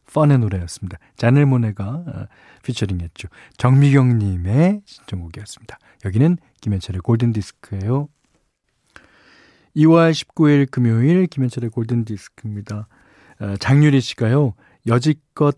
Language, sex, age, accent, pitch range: Korean, male, 40-59, native, 105-140 Hz